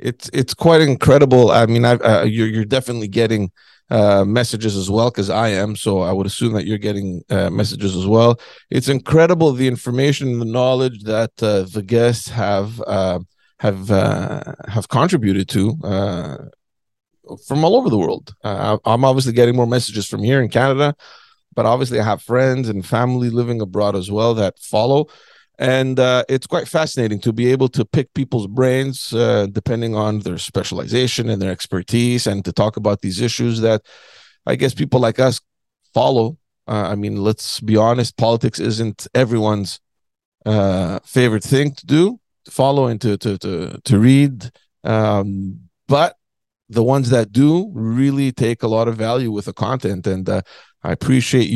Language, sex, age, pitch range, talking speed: English, male, 30-49, 105-130 Hz, 175 wpm